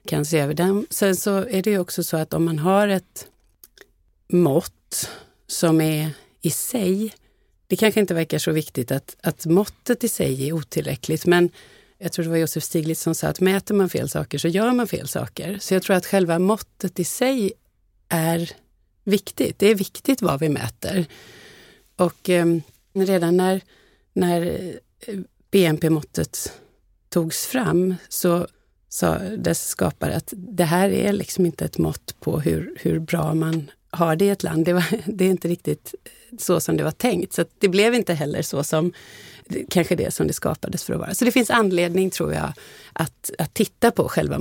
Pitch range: 160-195 Hz